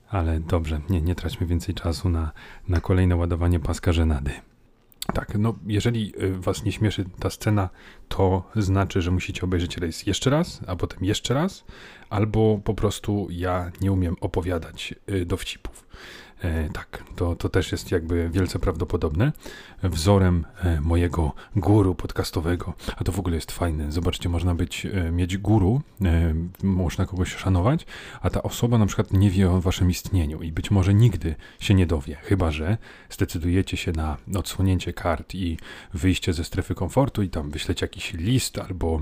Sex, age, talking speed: male, 30-49, 155 wpm